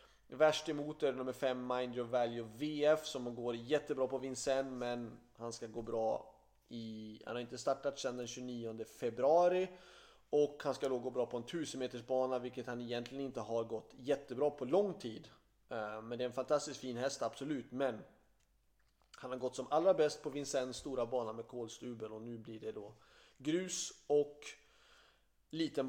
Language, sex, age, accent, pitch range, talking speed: Swedish, male, 30-49, native, 120-165 Hz, 180 wpm